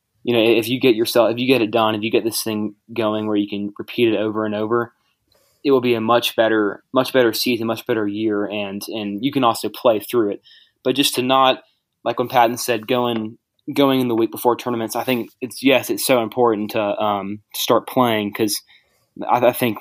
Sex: male